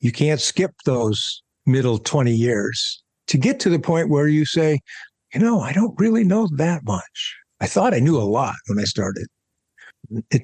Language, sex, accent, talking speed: English, male, American, 190 wpm